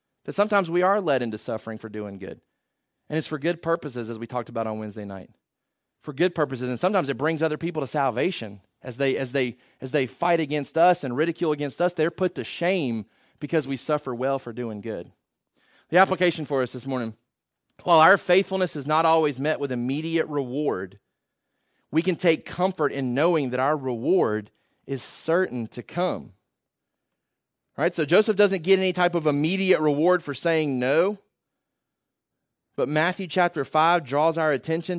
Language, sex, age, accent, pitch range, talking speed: English, male, 30-49, American, 130-180 Hz, 180 wpm